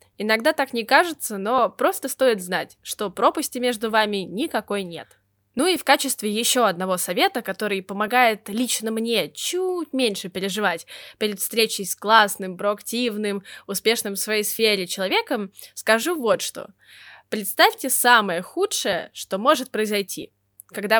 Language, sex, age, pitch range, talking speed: Russian, female, 10-29, 190-255 Hz, 135 wpm